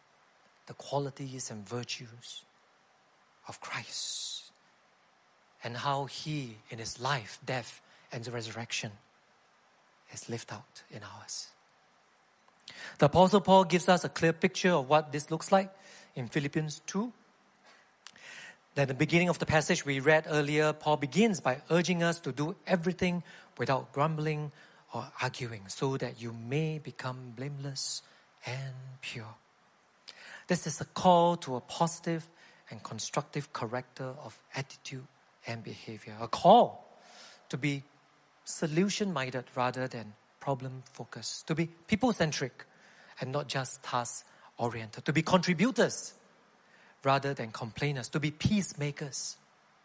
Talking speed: 125 wpm